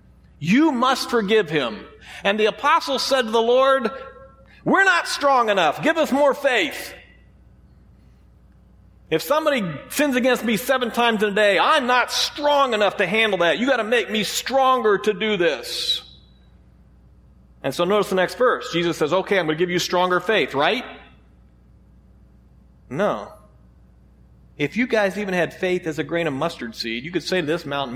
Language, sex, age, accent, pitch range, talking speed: English, male, 40-59, American, 155-235 Hz, 175 wpm